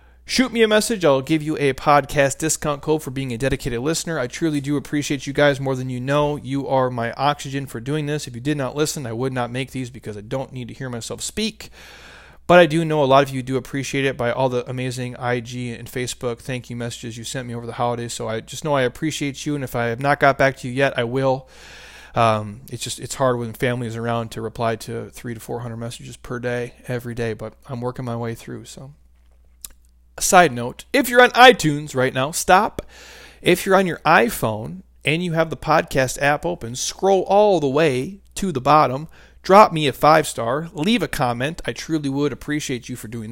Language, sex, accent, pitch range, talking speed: English, male, American, 120-160 Hz, 230 wpm